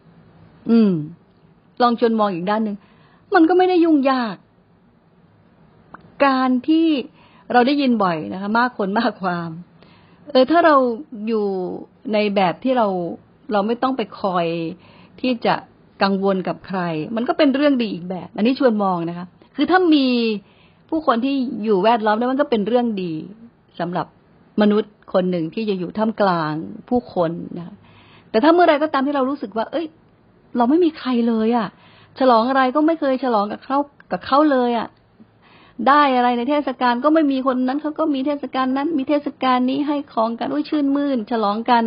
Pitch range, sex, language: 195-270 Hz, female, Thai